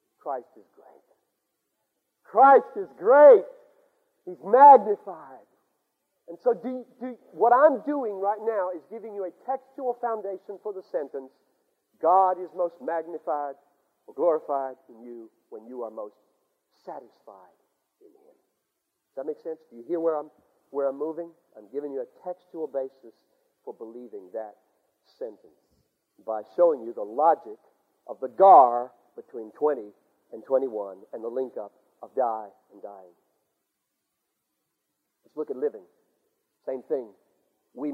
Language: English